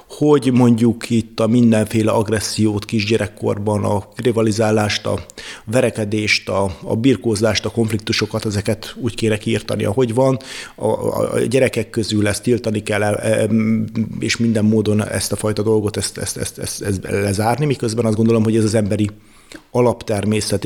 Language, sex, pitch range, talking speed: Hungarian, male, 105-120 Hz, 150 wpm